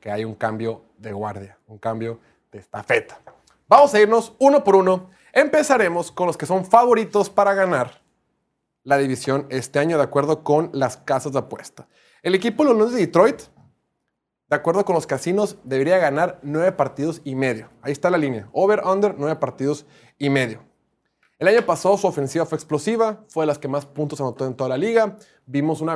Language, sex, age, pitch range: Spanish, male, 30-49, 130-175 Hz